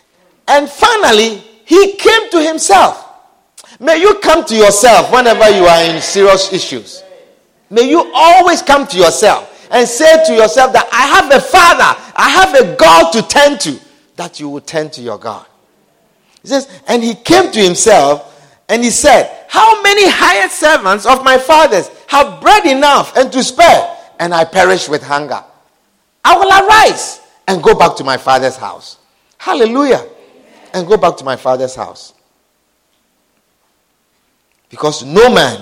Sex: male